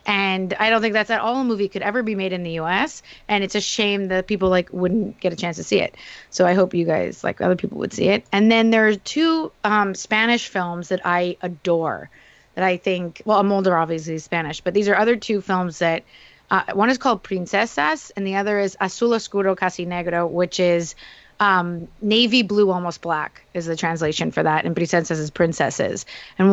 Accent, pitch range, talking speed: American, 170-205 Hz, 220 wpm